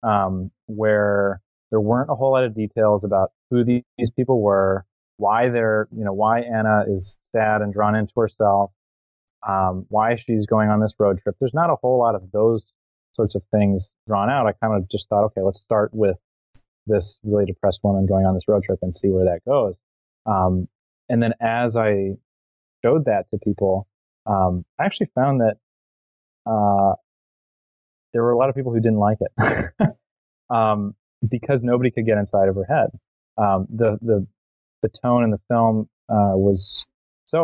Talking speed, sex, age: 185 wpm, male, 30-49